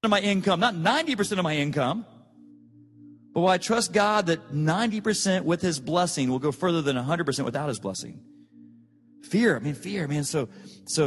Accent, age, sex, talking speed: American, 40-59, male, 195 wpm